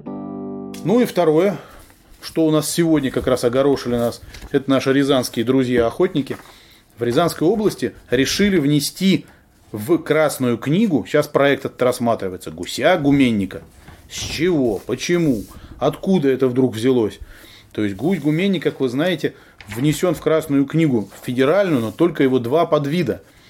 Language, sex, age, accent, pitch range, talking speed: Russian, male, 30-49, native, 110-155 Hz, 135 wpm